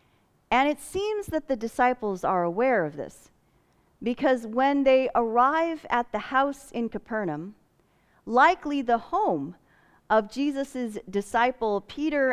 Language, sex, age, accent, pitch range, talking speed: English, female, 40-59, American, 205-280 Hz, 125 wpm